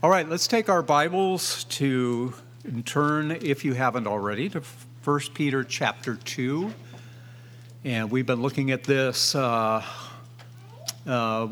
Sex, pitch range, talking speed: male, 120-150 Hz, 135 wpm